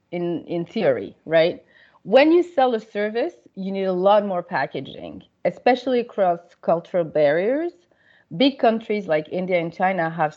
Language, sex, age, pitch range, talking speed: English, female, 30-49, 170-220 Hz, 150 wpm